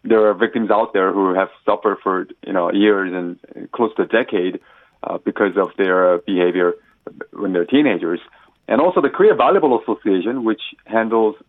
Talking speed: 180 wpm